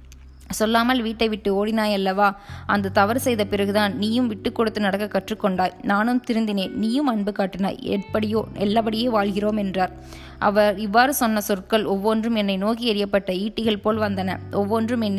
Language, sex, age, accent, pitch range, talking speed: Tamil, female, 20-39, native, 195-225 Hz, 140 wpm